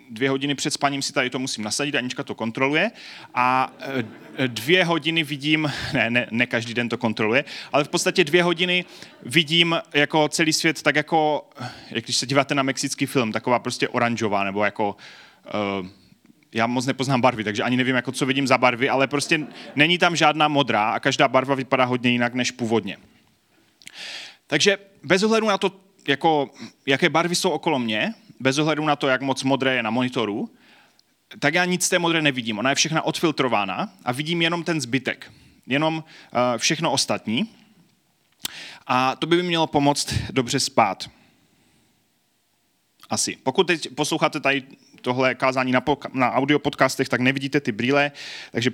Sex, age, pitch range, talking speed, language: male, 30-49, 125-155 Hz, 165 wpm, Czech